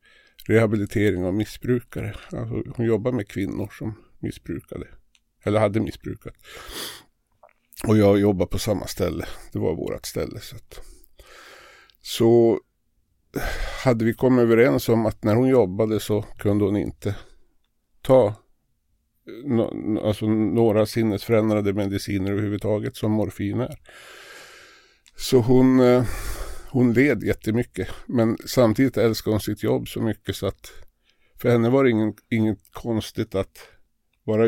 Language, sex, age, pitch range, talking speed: Swedish, male, 50-69, 100-120 Hz, 125 wpm